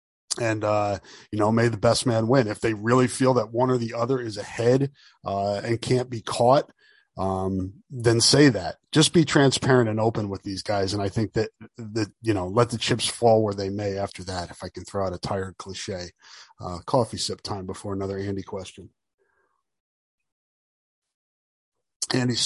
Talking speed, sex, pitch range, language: 185 wpm, male, 100-120 Hz, English